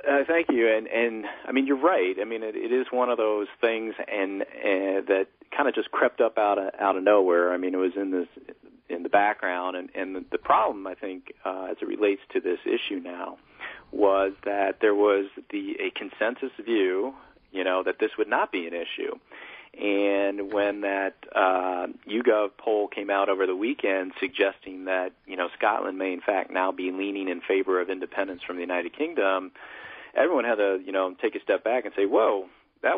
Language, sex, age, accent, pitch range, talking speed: English, male, 40-59, American, 95-145 Hz, 205 wpm